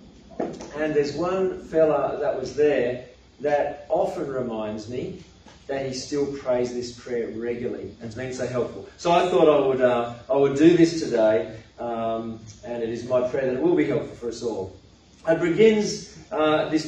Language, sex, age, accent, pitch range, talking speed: English, male, 40-59, Australian, 145-215 Hz, 180 wpm